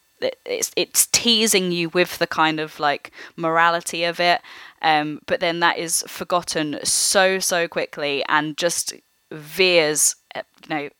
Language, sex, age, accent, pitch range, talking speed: English, female, 10-29, British, 155-180 Hz, 140 wpm